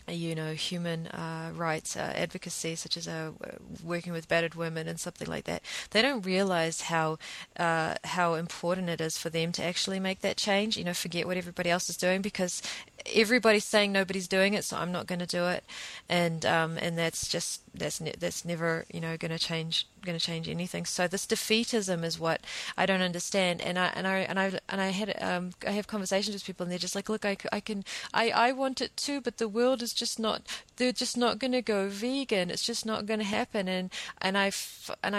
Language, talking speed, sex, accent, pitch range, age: English, 220 wpm, female, Australian, 170-210 Hz, 30-49